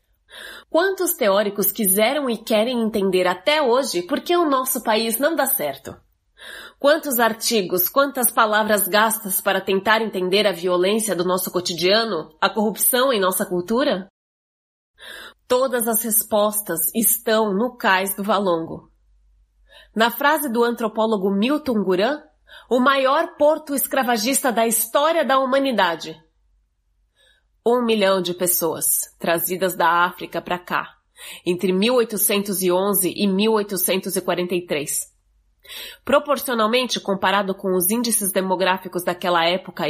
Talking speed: 115 wpm